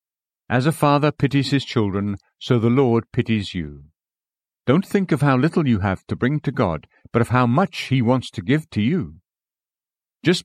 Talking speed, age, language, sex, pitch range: 190 wpm, 60-79, English, male, 110-145 Hz